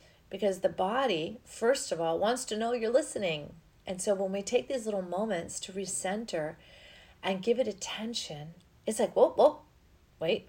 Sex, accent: female, American